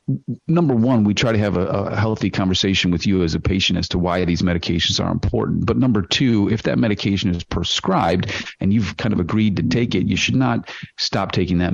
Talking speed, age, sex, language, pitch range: 225 wpm, 40-59, male, English, 90-105 Hz